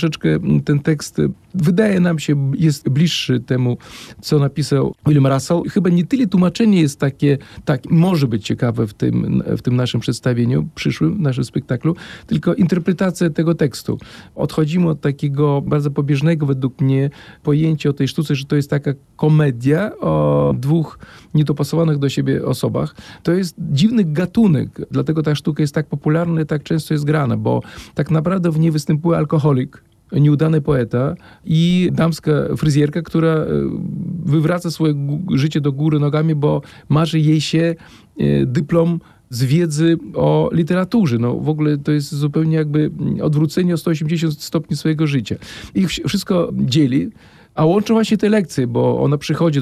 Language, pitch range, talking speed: Polish, 140-165 Hz, 145 wpm